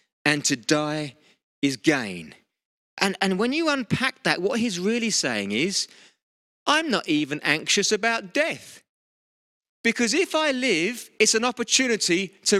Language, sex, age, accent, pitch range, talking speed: English, male, 30-49, British, 145-225 Hz, 145 wpm